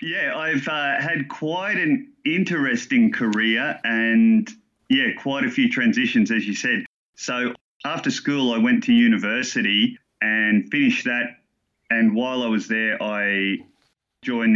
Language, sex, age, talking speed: English, male, 30-49, 140 wpm